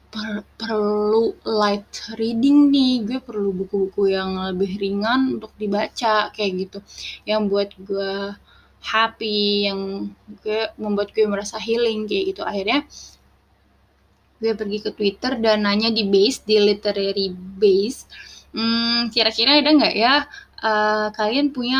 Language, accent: Indonesian, native